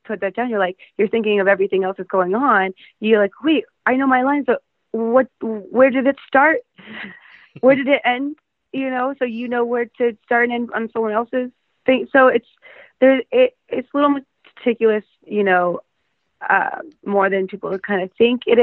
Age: 20-39